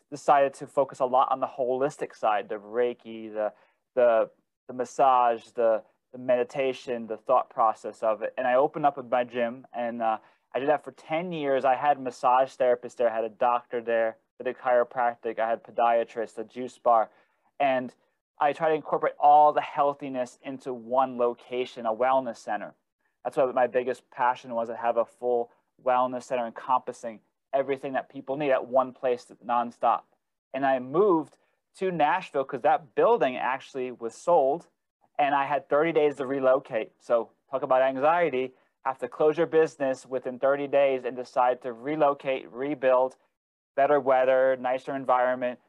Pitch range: 120-140 Hz